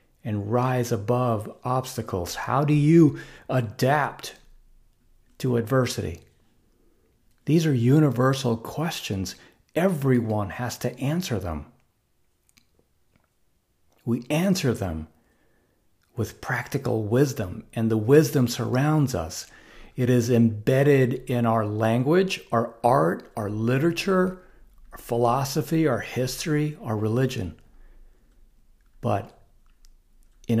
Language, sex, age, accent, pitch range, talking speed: English, male, 50-69, American, 110-135 Hz, 95 wpm